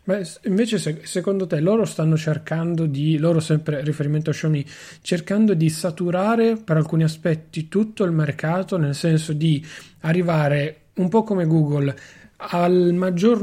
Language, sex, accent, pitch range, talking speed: Italian, male, native, 155-195 Hz, 145 wpm